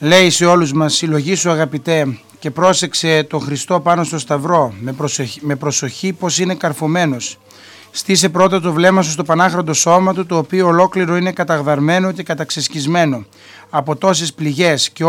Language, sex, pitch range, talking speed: Greek, male, 150-180 Hz, 160 wpm